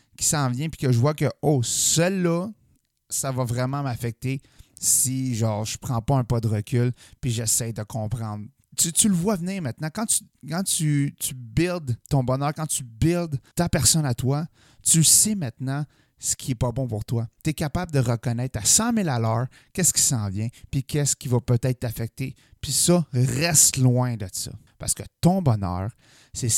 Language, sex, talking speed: French, male, 200 wpm